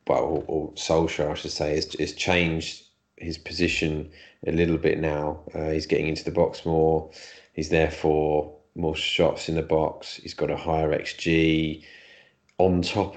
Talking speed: 165 wpm